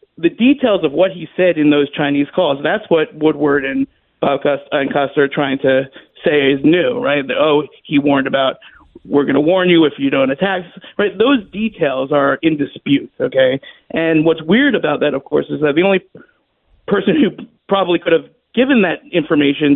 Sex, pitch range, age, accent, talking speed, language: male, 155-215 Hz, 50-69, American, 190 wpm, English